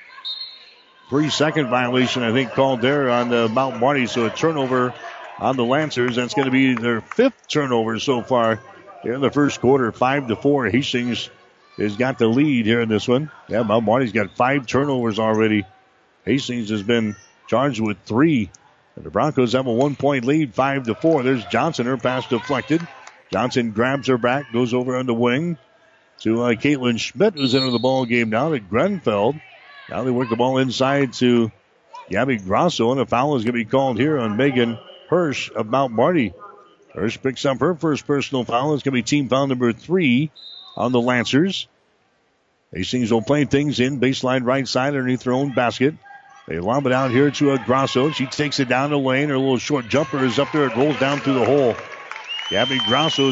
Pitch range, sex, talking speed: 120-145 Hz, male, 195 wpm